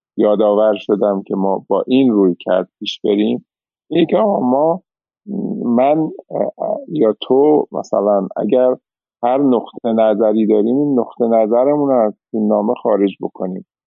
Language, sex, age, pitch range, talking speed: Persian, male, 50-69, 105-135 Hz, 135 wpm